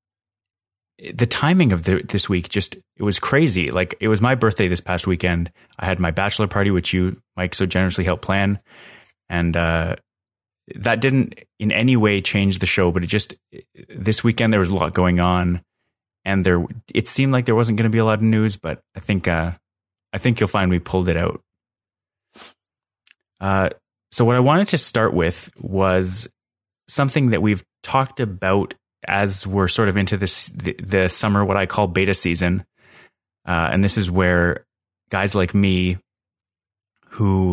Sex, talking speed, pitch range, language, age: male, 180 wpm, 90-110 Hz, English, 30-49